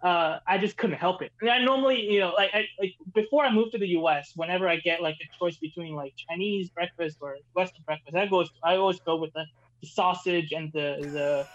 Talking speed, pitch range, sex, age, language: 240 wpm, 160-215 Hz, male, 20-39, English